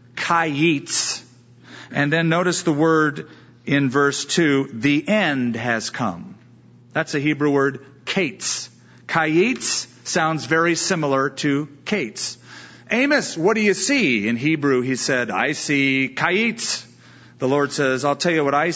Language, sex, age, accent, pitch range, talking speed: English, male, 40-59, American, 125-180 Hz, 140 wpm